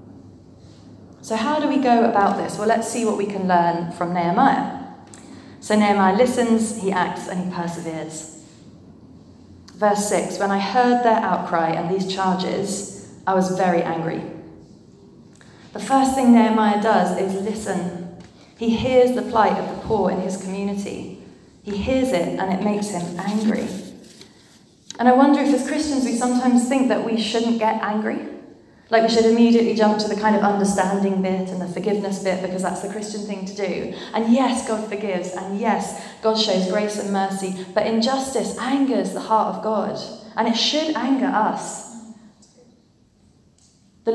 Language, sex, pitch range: English, female, 185-230 Hz